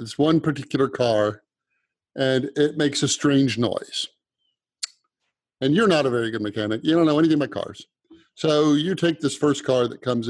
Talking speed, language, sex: 180 wpm, English, male